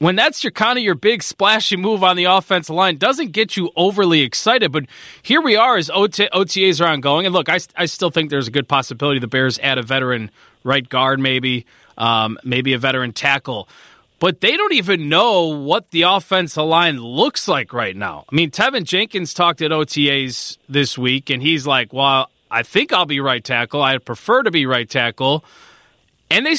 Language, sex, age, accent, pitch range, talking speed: English, male, 20-39, American, 135-185 Hz, 200 wpm